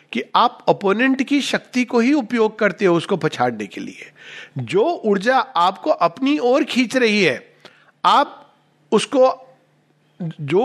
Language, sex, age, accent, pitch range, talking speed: Hindi, male, 50-69, native, 145-215 Hz, 140 wpm